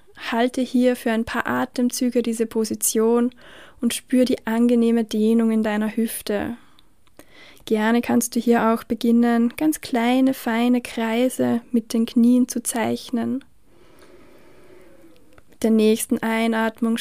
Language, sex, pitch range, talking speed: German, female, 225-250 Hz, 125 wpm